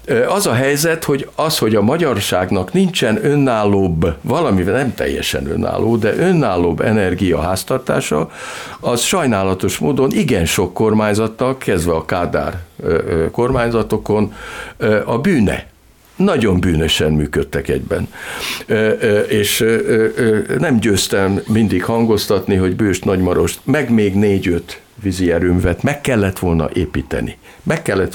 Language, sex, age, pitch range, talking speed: Hungarian, male, 60-79, 90-125 Hz, 110 wpm